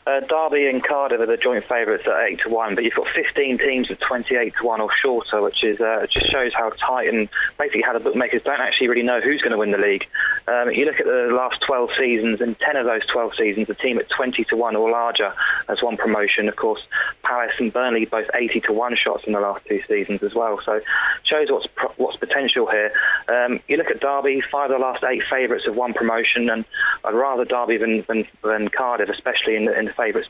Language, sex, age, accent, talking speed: English, male, 20-39, British, 240 wpm